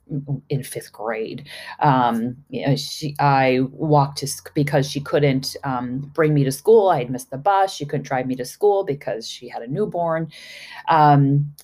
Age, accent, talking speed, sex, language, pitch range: 30-49, American, 185 wpm, female, English, 135-160 Hz